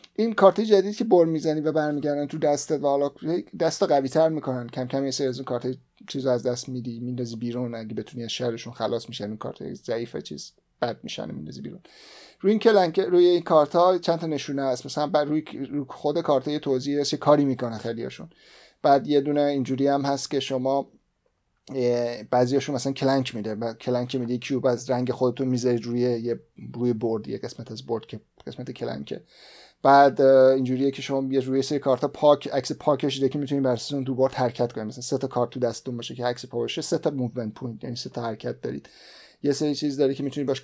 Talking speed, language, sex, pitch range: 205 wpm, Persian, male, 120-145 Hz